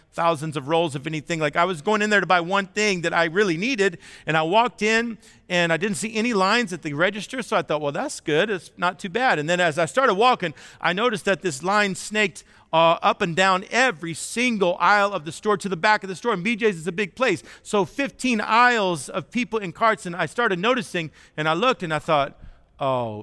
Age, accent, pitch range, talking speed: 40-59, American, 155-205 Hz, 245 wpm